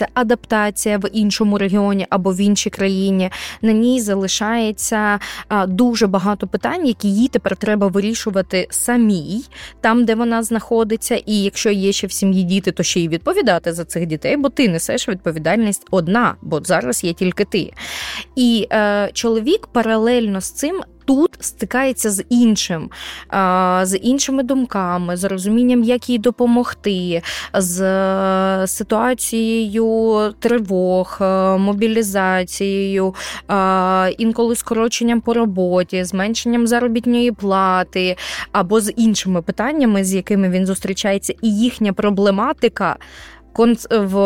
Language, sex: Ukrainian, female